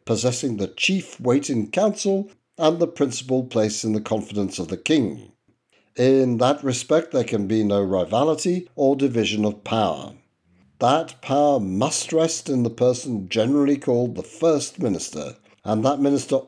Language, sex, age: English, male, 60-79